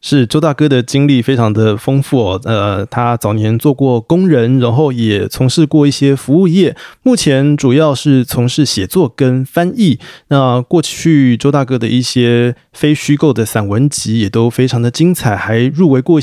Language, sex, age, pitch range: Chinese, male, 20-39, 120-155 Hz